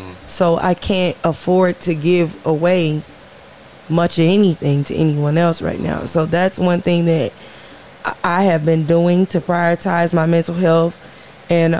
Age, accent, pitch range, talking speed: 20-39, American, 155-175 Hz, 155 wpm